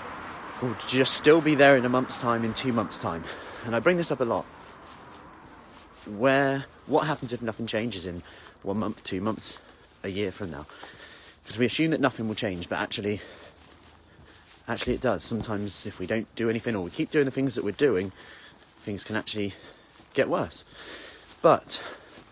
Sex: male